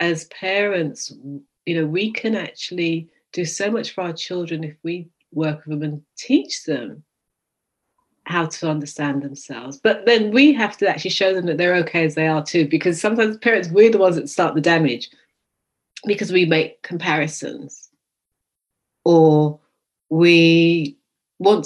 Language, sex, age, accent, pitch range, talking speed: English, female, 30-49, British, 155-190 Hz, 160 wpm